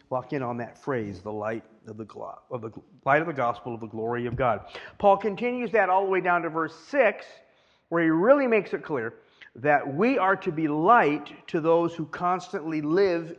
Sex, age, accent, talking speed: male, 50-69, American, 215 wpm